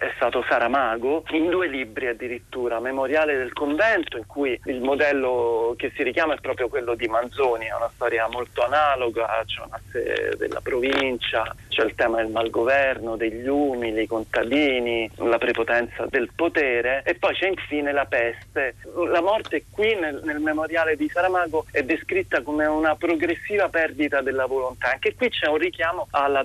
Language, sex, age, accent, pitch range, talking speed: Italian, male, 40-59, native, 130-165 Hz, 170 wpm